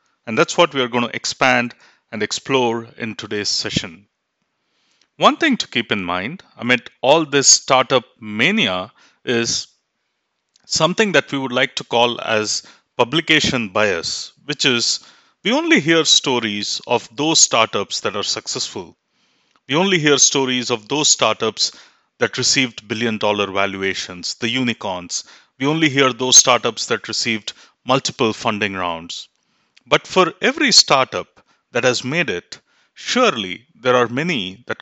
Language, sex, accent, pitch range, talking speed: English, male, Indian, 110-145 Hz, 145 wpm